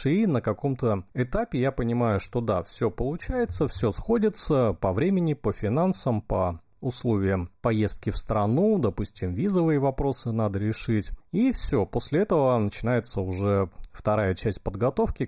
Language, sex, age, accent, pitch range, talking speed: Russian, male, 30-49, native, 100-150 Hz, 140 wpm